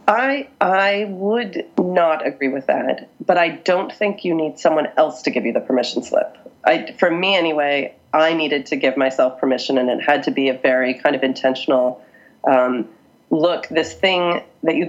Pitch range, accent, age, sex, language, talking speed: 140-180 Hz, American, 30-49, female, English, 190 wpm